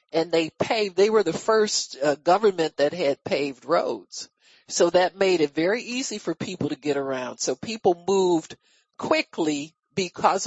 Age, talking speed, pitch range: 50-69, 165 wpm, 165-220 Hz